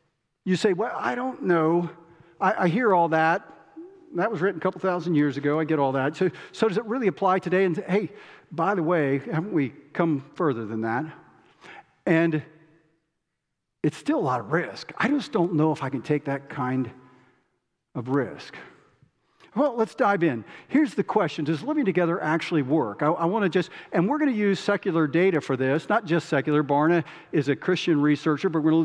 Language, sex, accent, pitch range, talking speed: English, male, American, 145-185 Hz, 200 wpm